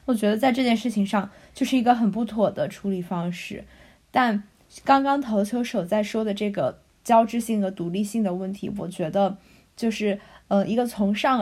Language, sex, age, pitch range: Chinese, female, 20-39, 200-245 Hz